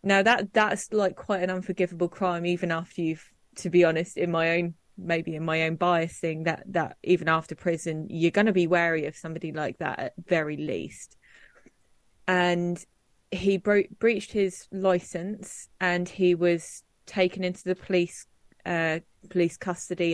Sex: female